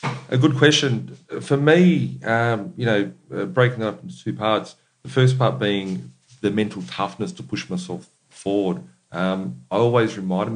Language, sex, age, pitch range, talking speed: English, male, 40-59, 90-130 Hz, 170 wpm